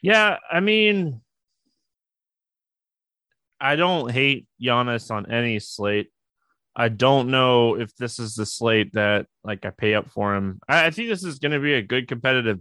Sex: male